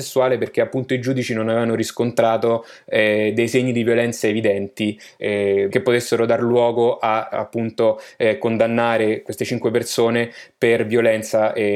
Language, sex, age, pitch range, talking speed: Italian, male, 20-39, 110-130 Hz, 145 wpm